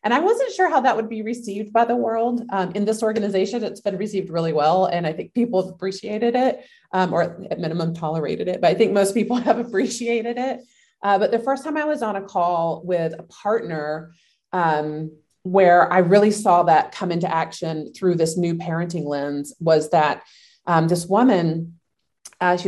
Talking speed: 200 wpm